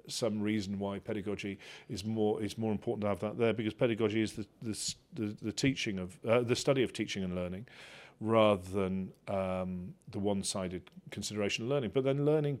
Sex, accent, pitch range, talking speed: male, British, 100-125 Hz, 190 wpm